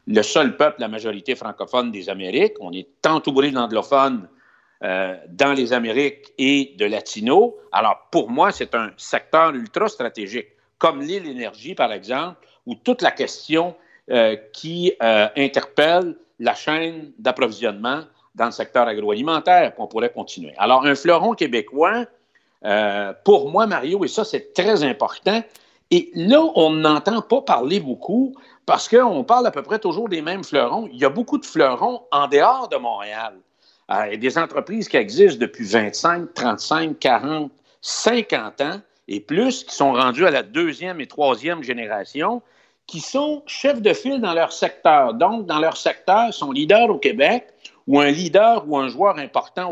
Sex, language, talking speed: male, French, 165 wpm